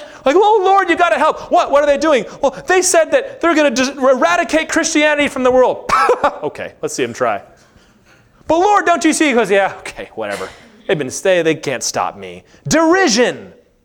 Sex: male